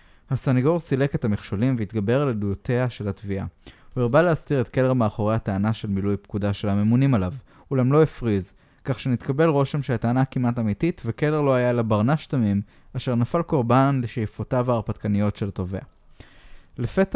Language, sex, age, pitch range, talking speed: Hebrew, male, 20-39, 100-140 Hz, 155 wpm